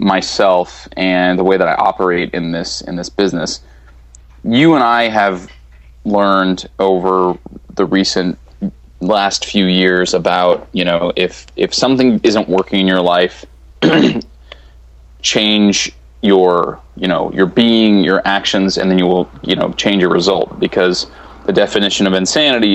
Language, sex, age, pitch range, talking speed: English, male, 30-49, 80-100 Hz, 150 wpm